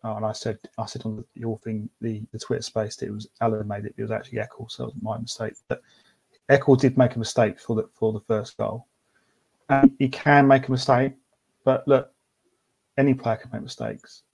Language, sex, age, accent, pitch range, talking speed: English, male, 30-49, British, 115-135 Hz, 225 wpm